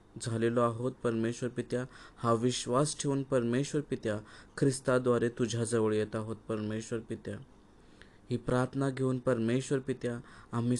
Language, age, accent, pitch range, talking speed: Marathi, 20-39, native, 115-130 Hz, 115 wpm